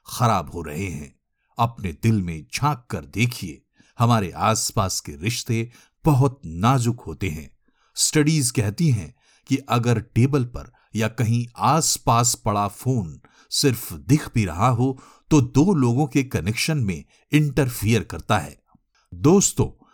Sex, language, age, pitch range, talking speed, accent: male, Hindi, 50-69, 95-140 Hz, 135 wpm, native